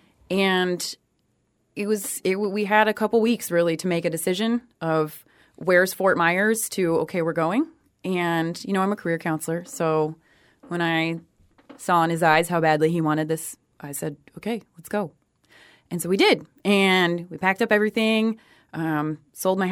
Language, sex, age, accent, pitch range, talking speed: English, female, 20-39, American, 160-210 Hz, 180 wpm